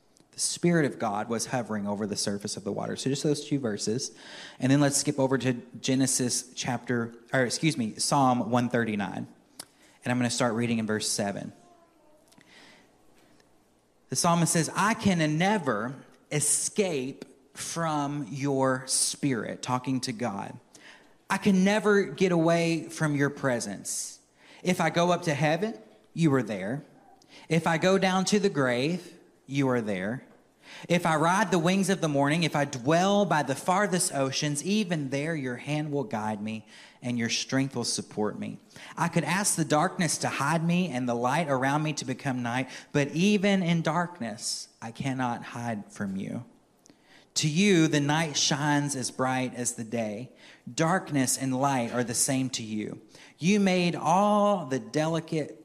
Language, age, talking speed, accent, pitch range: English, 30-49, 165 wpm, American, 125-165 Hz